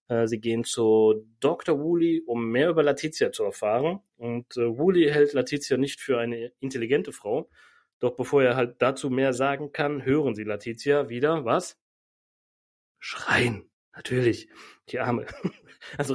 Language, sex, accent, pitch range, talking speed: German, male, German, 115-145 Hz, 145 wpm